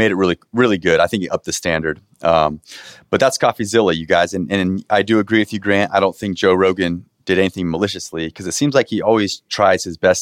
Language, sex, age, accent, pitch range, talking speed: English, male, 30-49, American, 85-110 Hz, 245 wpm